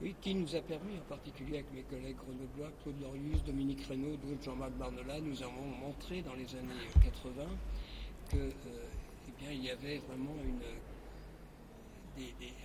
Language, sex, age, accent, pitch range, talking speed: French, male, 60-79, French, 130-150 Hz, 160 wpm